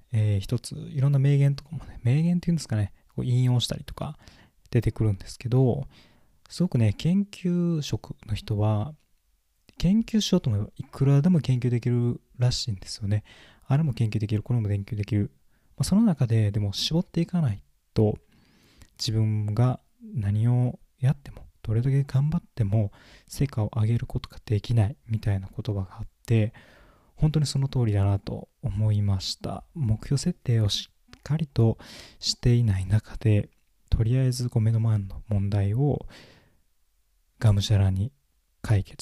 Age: 20-39